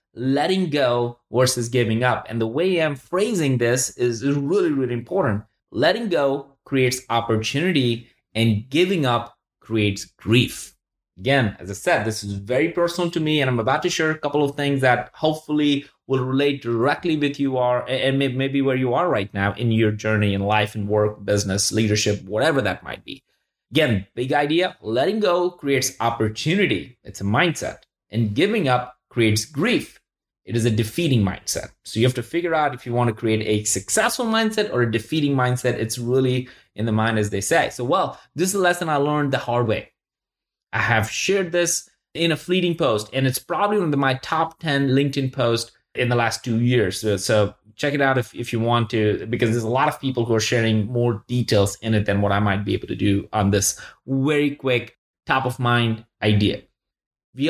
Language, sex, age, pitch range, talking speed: English, male, 20-39, 110-145 Hz, 200 wpm